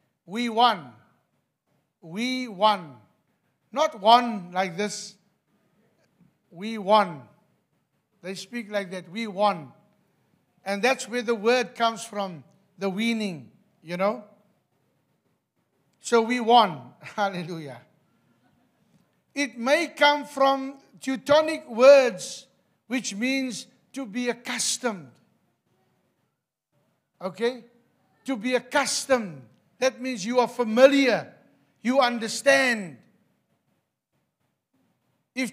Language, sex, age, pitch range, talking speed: English, male, 60-79, 185-255 Hz, 90 wpm